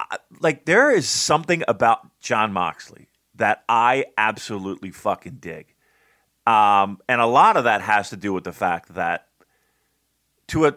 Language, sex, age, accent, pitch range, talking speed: English, male, 40-59, American, 115-185 Hz, 150 wpm